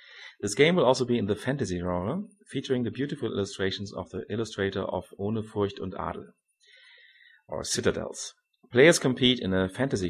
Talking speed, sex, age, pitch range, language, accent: 165 wpm, male, 30-49, 95-120 Hz, English, German